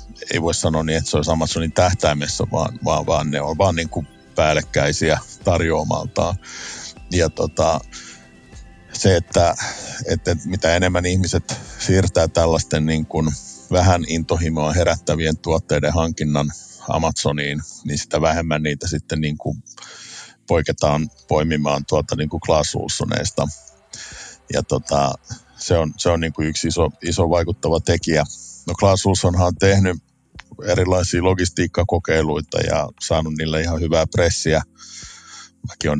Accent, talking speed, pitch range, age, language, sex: native, 125 wpm, 75-90 Hz, 50-69, Finnish, male